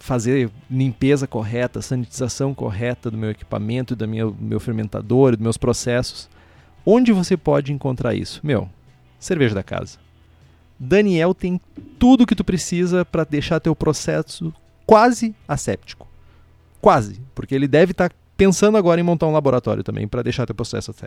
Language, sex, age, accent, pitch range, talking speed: Portuguese, male, 30-49, Brazilian, 115-175 Hz, 155 wpm